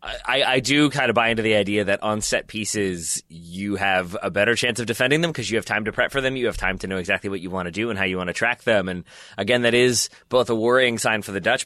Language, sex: English, male